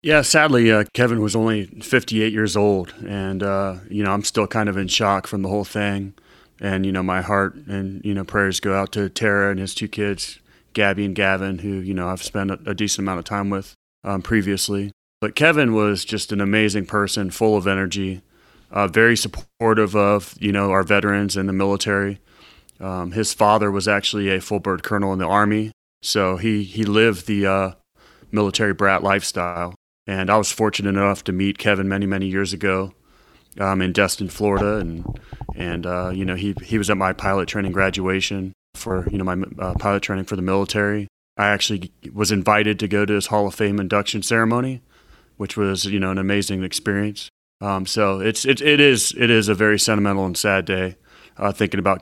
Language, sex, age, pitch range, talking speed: English, male, 30-49, 95-105 Hz, 200 wpm